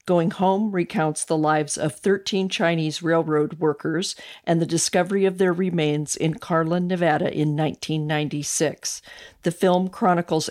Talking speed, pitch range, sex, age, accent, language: 135 wpm, 155-185 Hz, female, 50-69, American, English